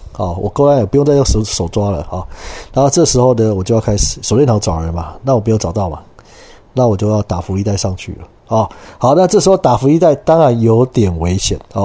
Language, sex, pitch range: Chinese, male, 95-140 Hz